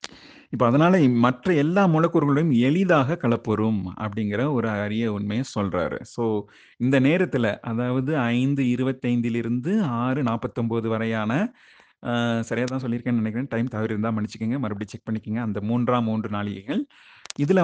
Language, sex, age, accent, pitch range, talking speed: Tamil, male, 30-49, native, 115-140 Hz, 120 wpm